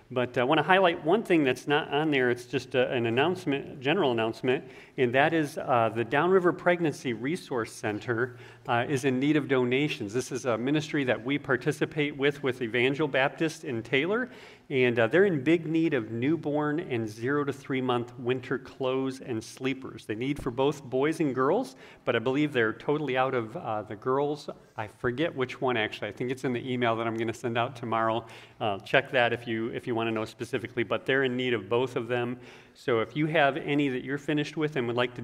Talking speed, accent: 215 wpm, American